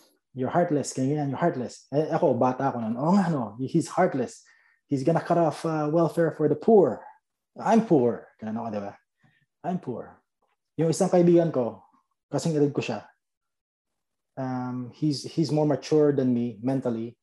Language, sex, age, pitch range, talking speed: Filipino, male, 20-39, 120-155 Hz, 95 wpm